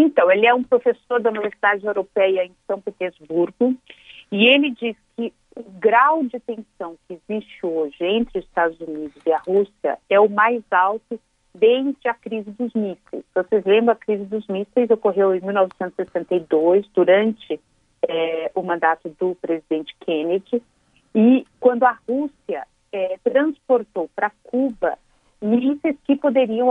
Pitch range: 180-240 Hz